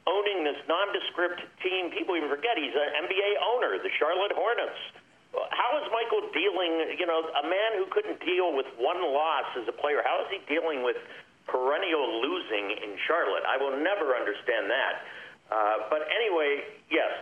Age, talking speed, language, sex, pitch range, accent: 50-69, 170 wpm, English, male, 135-220 Hz, American